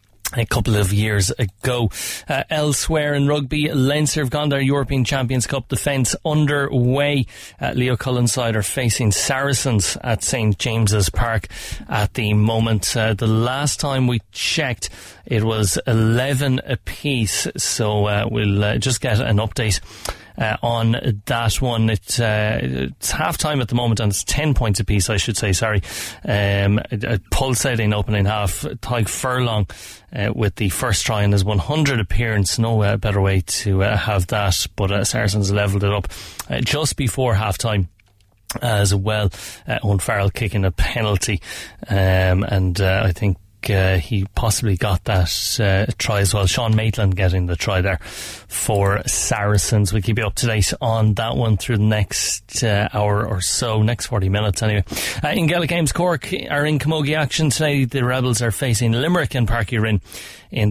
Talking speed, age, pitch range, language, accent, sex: 170 wpm, 30-49, 100-125 Hz, English, Irish, male